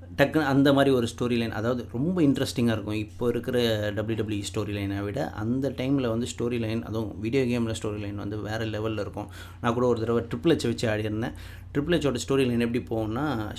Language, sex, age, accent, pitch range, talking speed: Tamil, male, 30-49, native, 105-125 Hz, 200 wpm